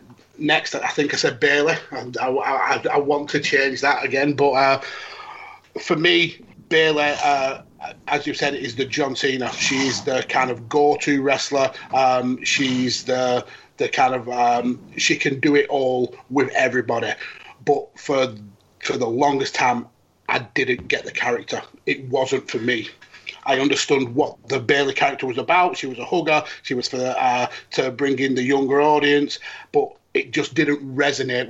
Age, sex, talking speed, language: 30-49, male, 170 wpm, English